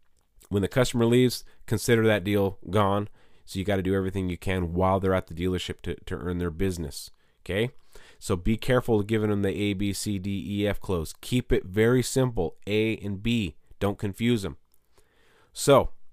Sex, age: male, 30-49